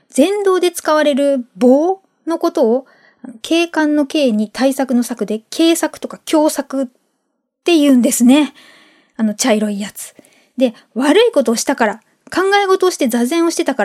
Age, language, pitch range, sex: 20-39, Japanese, 235-310 Hz, female